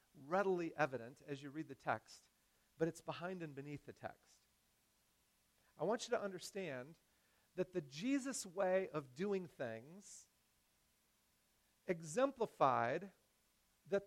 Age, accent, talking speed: 40-59, American, 120 wpm